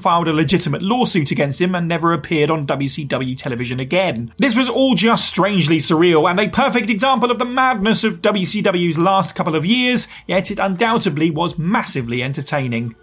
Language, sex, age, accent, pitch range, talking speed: English, male, 30-49, British, 180-235 Hz, 175 wpm